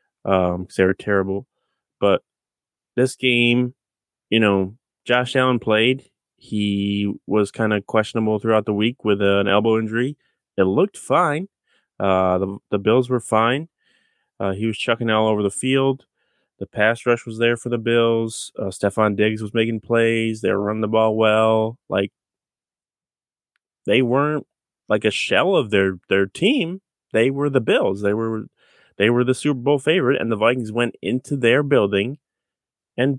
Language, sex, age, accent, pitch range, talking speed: English, male, 20-39, American, 105-125 Hz, 165 wpm